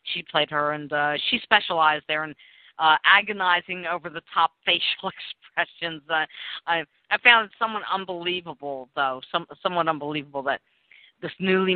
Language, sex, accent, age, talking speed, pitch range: English, female, American, 50-69, 140 wpm, 155-210 Hz